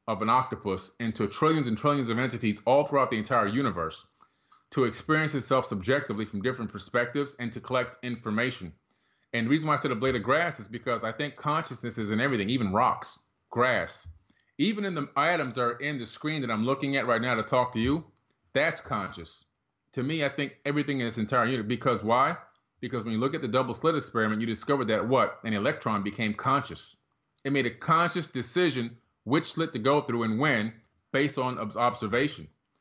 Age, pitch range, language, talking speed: 30-49, 110-140 Hz, English, 200 wpm